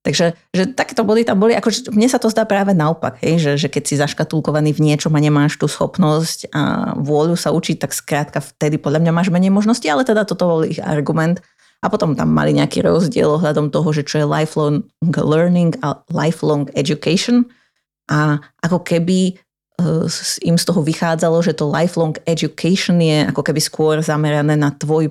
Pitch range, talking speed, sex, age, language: 150-175 Hz, 185 wpm, female, 30-49, Slovak